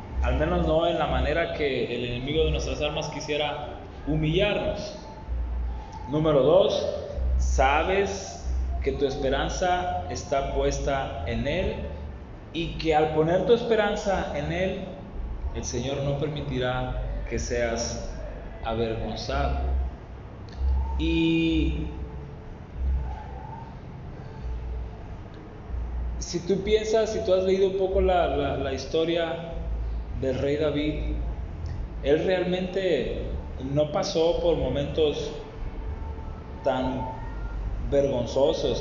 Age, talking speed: 20-39, 100 wpm